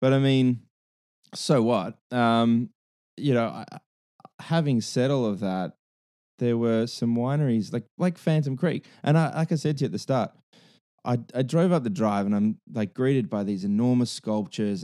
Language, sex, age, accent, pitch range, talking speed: English, male, 20-39, Australian, 100-140 Hz, 185 wpm